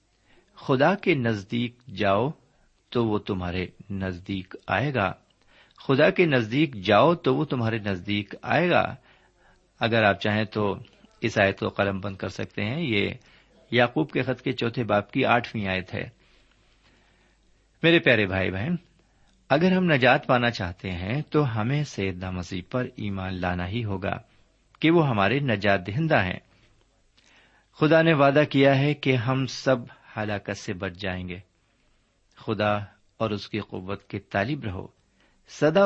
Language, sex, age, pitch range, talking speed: Urdu, male, 50-69, 100-130 Hz, 150 wpm